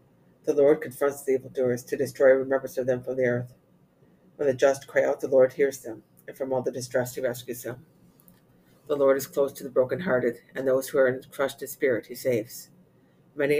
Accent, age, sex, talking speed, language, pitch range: American, 50-69, female, 205 wpm, English, 120-135 Hz